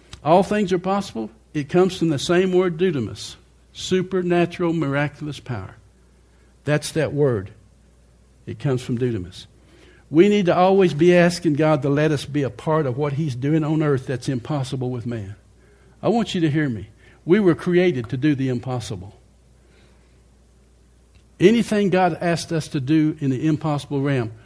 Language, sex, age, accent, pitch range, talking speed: English, male, 60-79, American, 120-180 Hz, 165 wpm